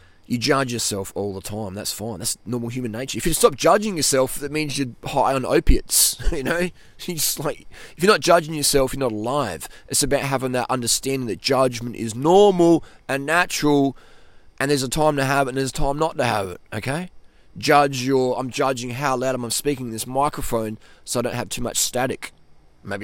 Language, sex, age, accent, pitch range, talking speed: English, male, 20-39, Australian, 120-150 Hz, 215 wpm